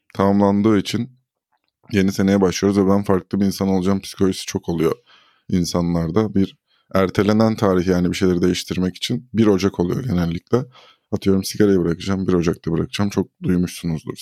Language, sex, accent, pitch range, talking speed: Turkish, male, native, 90-110 Hz, 150 wpm